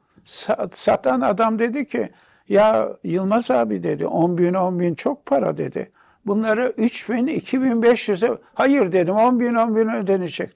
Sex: male